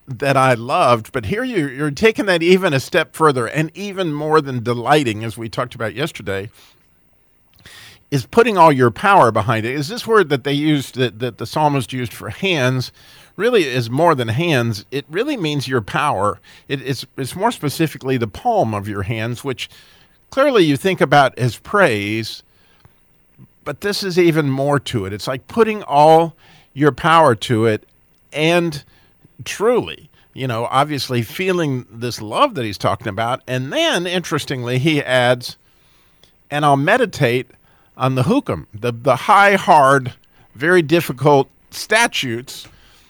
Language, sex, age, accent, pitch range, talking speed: English, male, 50-69, American, 120-160 Hz, 155 wpm